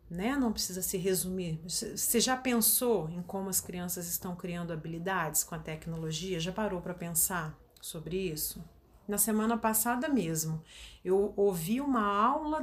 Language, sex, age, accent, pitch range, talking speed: Portuguese, female, 40-59, Brazilian, 190-235 Hz, 145 wpm